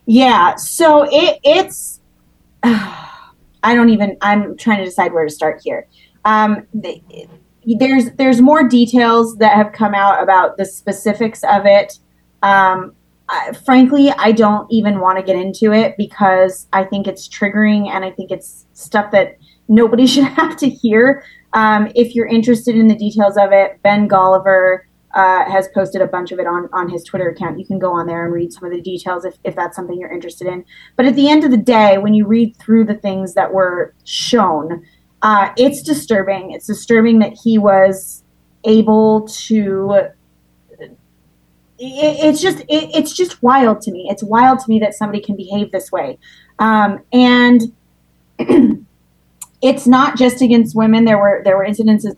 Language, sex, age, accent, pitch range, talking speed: English, female, 20-39, American, 190-235 Hz, 180 wpm